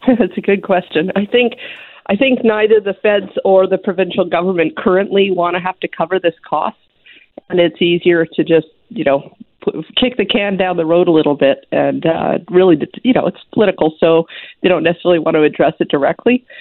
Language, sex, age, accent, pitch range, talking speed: English, female, 50-69, American, 170-210 Hz, 200 wpm